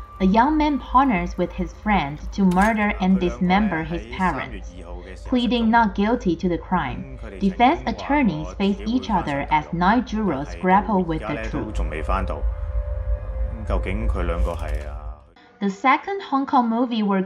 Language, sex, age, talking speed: English, female, 30-49, 130 wpm